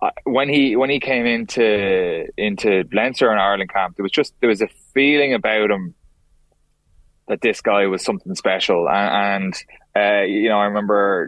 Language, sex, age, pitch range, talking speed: English, male, 20-39, 95-115 Hz, 175 wpm